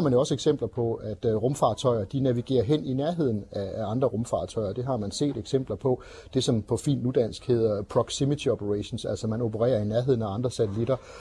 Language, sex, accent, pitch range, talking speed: Danish, male, native, 115-135 Hz, 200 wpm